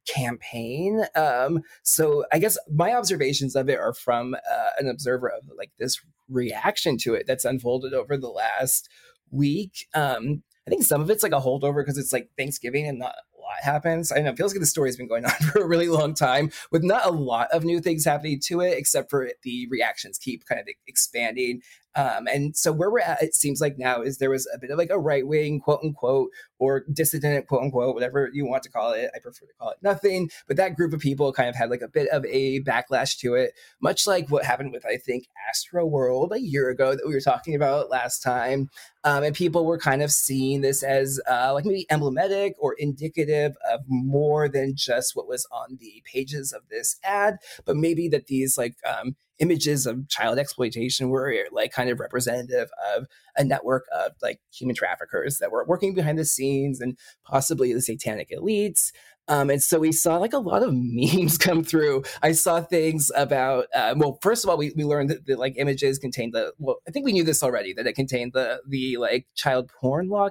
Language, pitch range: English, 130-170 Hz